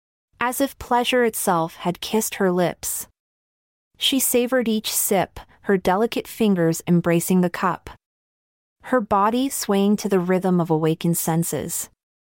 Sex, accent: female, American